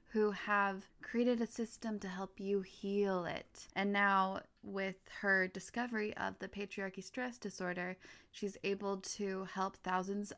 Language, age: English, 20-39